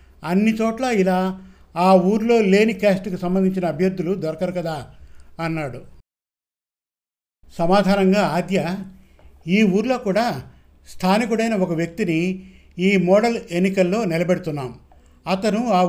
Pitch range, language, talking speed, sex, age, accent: 160-200 Hz, Telugu, 100 wpm, male, 50-69, native